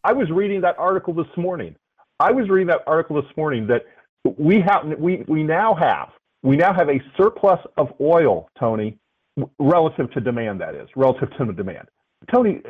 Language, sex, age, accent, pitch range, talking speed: English, male, 40-59, American, 130-180 Hz, 185 wpm